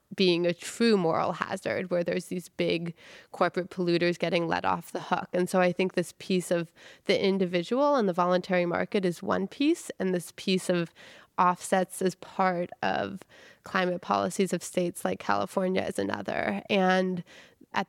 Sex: female